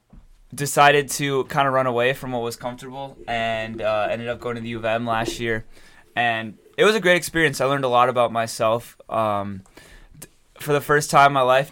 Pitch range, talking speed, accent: 115-130 Hz, 215 wpm, American